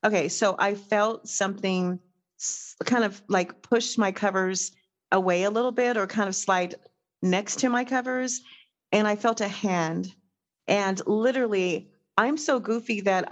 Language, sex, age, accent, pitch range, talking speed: English, female, 40-59, American, 200-255 Hz, 155 wpm